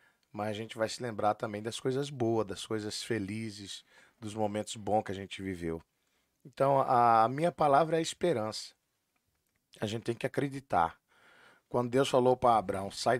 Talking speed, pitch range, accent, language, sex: 175 wpm, 105-140 Hz, Brazilian, Portuguese, male